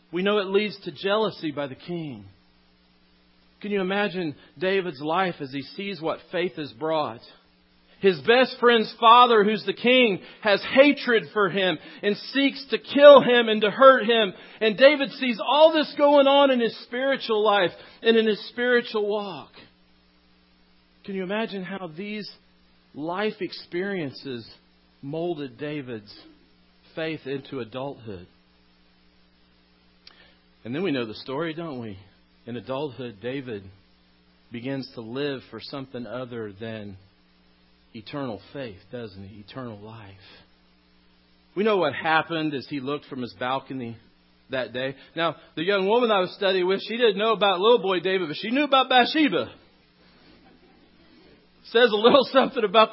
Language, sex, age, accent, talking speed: English, male, 40-59, American, 145 wpm